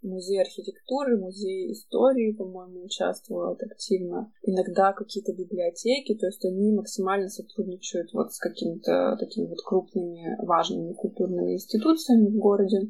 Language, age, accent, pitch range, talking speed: Russian, 20-39, native, 185-215 Hz, 120 wpm